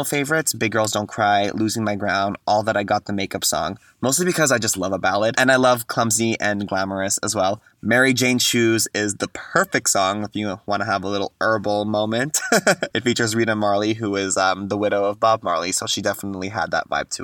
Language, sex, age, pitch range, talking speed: English, male, 20-39, 100-125 Hz, 225 wpm